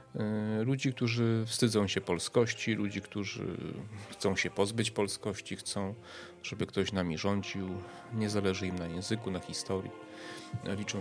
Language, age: Polish, 30-49